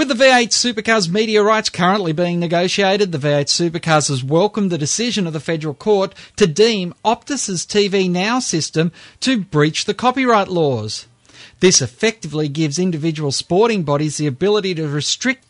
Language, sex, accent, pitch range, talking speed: English, male, Australian, 150-210 Hz, 160 wpm